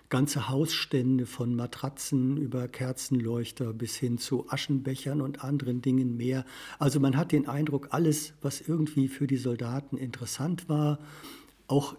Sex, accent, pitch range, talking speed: male, German, 125-150 Hz, 140 wpm